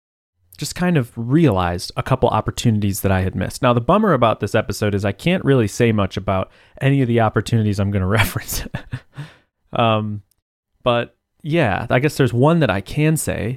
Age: 30-49